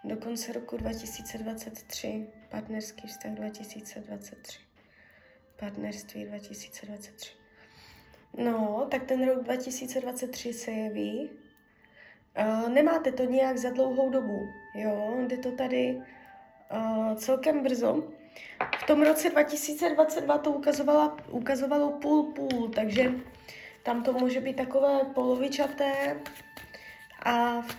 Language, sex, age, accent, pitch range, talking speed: Czech, female, 20-39, native, 220-275 Hz, 95 wpm